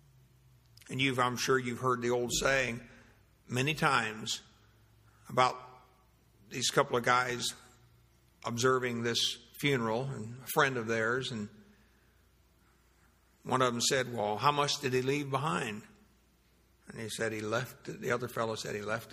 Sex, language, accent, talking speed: male, English, American, 150 wpm